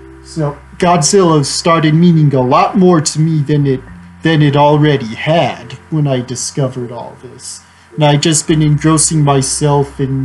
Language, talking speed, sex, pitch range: English, 160 wpm, male, 130-165 Hz